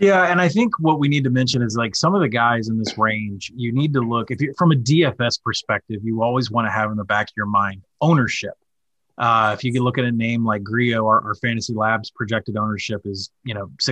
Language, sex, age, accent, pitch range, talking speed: English, male, 30-49, American, 110-135 Hz, 250 wpm